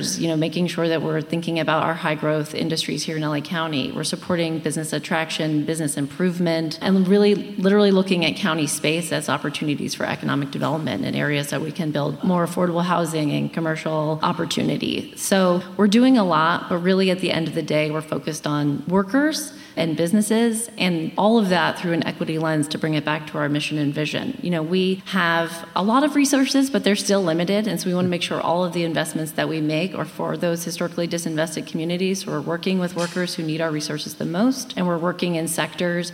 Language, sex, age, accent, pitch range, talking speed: English, female, 30-49, American, 155-190 Hz, 215 wpm